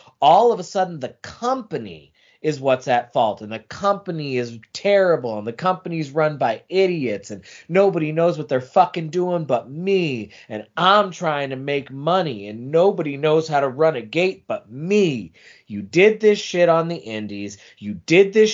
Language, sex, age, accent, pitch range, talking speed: English, male, 30-49, American, 165-225 Hz, 180 wpm